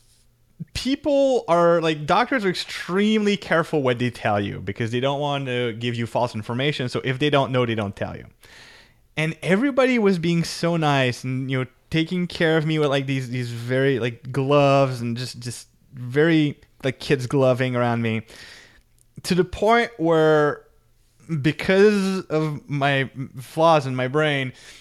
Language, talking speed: English, 165 wpm